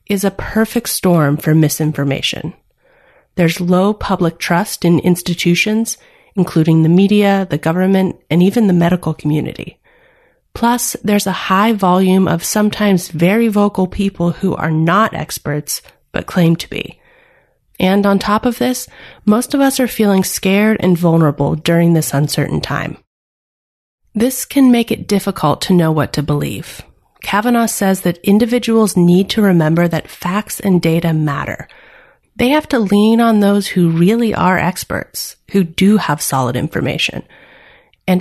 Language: English